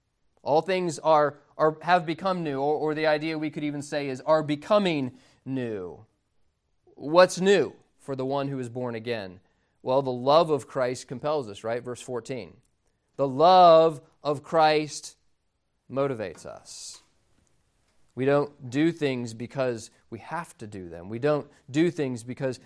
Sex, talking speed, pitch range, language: male, 155 wpm, 120-155 Hz, English